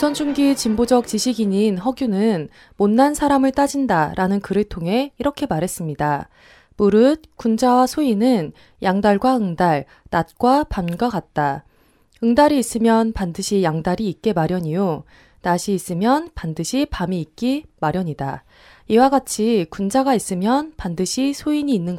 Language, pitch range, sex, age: Korean, 175-260 Hz, female, 20-39